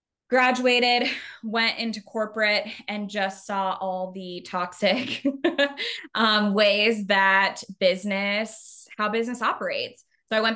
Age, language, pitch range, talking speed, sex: 20-39, English, 190-235 Hz, 115 wpm, female